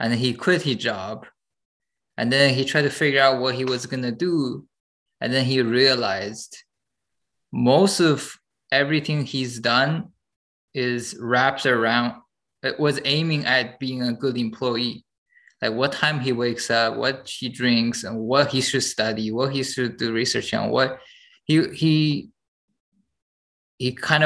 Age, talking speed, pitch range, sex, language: 20-39, 155 wpm, 120-140 Hz, male, English